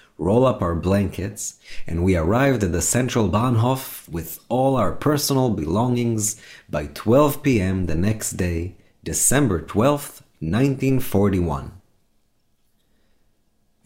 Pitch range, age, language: 95-125 Hz, 30-49, English